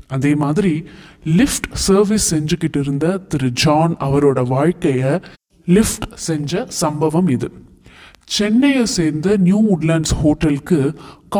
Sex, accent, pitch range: male, native, 145-195 Hz